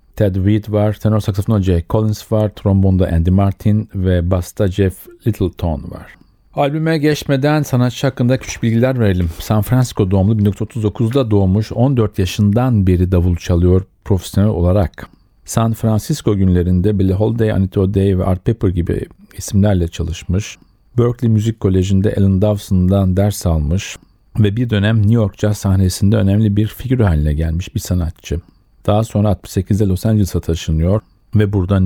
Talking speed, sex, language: 145 wpm, male, Turkish